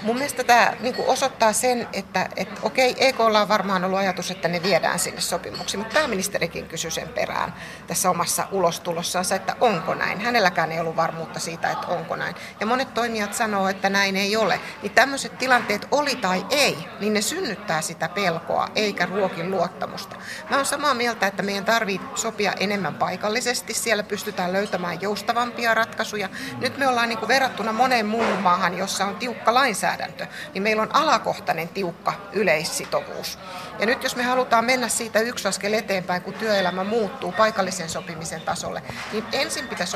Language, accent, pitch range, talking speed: Finnish, native, 185-235 Hz, 170 wpm